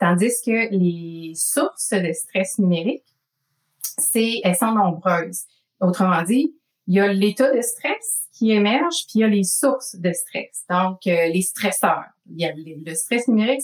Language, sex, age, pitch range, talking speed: French, female, 30-49, 180-225 Hz, 165 wpm